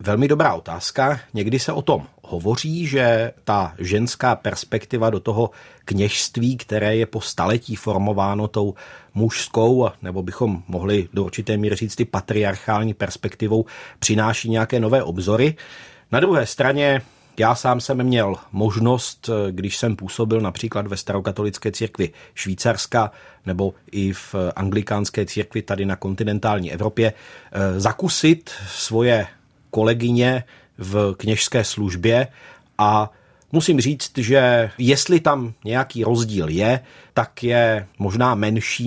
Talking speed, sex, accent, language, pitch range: 125 wpm, male, native, Czech, 100-120 Hz